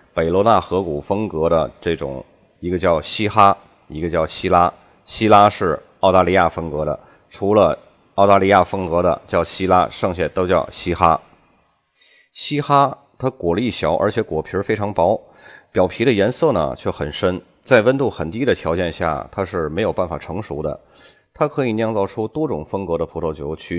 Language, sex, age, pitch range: Chinese, male, 30-49, 85-110 Hz